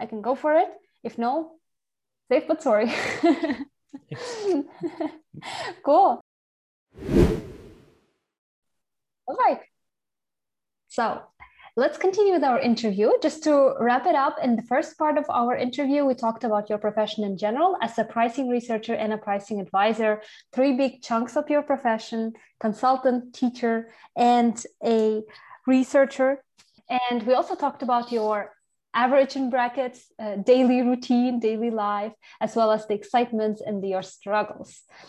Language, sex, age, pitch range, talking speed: English, female, 20-39, 230-305 Hz, 135 wpm